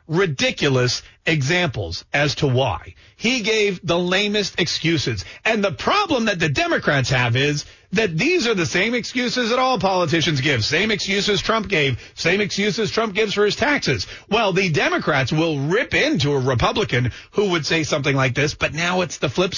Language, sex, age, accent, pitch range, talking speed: English, male, 40-59, American, 140-205 Hz, 180 wpm